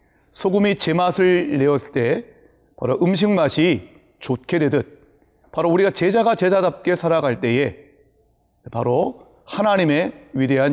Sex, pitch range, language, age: male, 125-170 Hz, Korean, 40-59